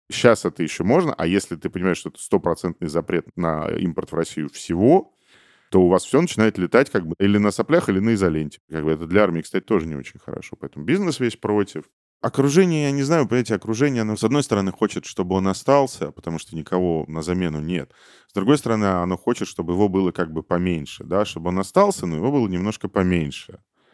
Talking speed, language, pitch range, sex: 215 wpm, Ukrainian, 75-110 Hz, male